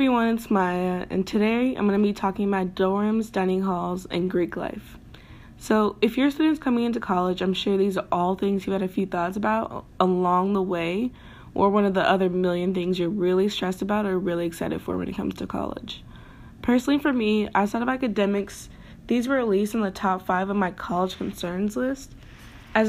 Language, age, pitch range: English, 20-39, 180-215 Hz